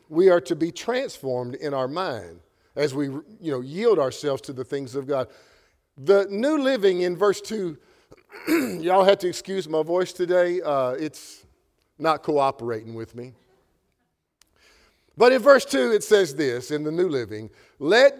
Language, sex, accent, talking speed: English, male, American, 165 wpm